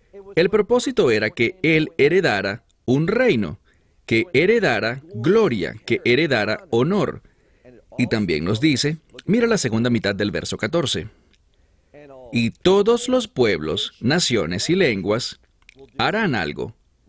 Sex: male